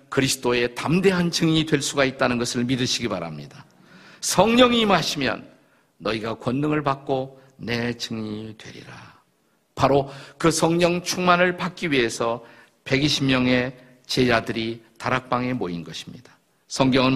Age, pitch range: 50-69, 110-150 Hz